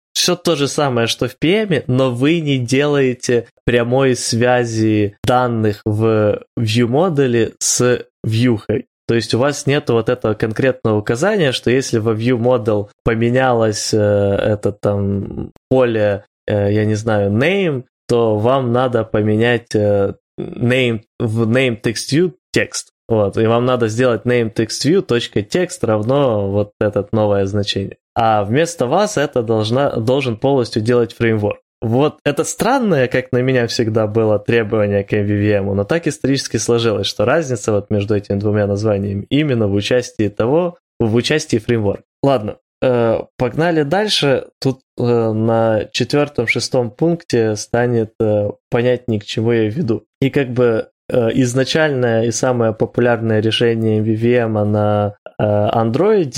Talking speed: 130 wpm